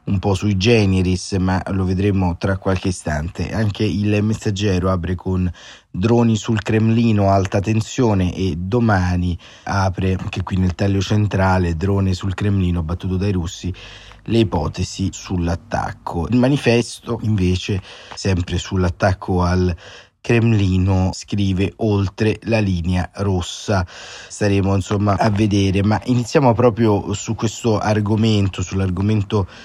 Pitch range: 95-105 Hz